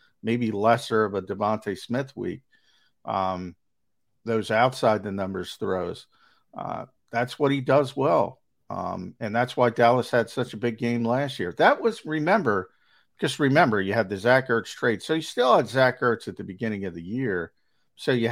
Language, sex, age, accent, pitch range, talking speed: English, male, 50-69, American, 105-130 Hz, 175 wpm